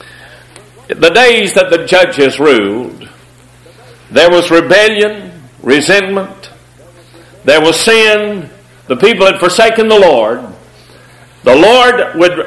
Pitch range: 155-225 Hz